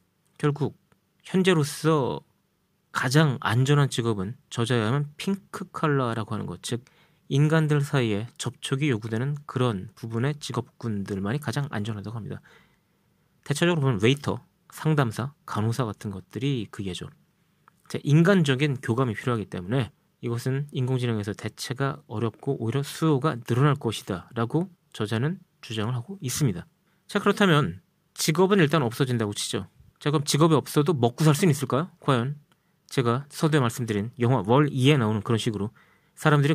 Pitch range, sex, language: 115-160 Hz, male, Korean